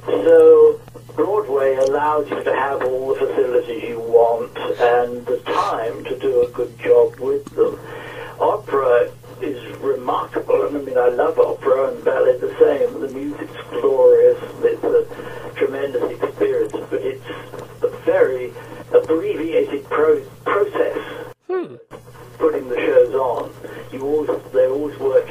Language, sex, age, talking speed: English, male, 60-79, 130 wpm